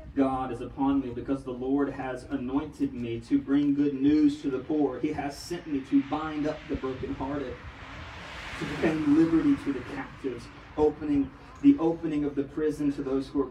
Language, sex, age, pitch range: English, male, 30-49, 150-195 Hz